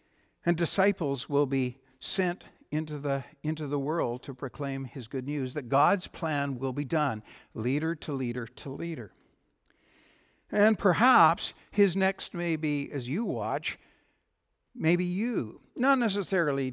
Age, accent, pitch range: 60-79, American, 130-170 Hz